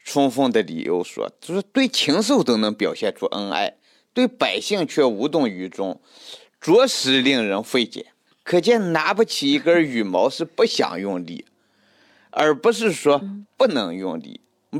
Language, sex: Chinese, male